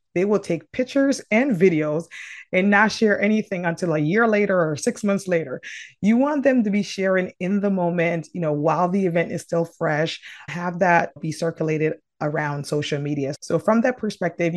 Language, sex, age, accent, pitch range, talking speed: English, female, 30-49, American, 160-200 Hz, 190 wpm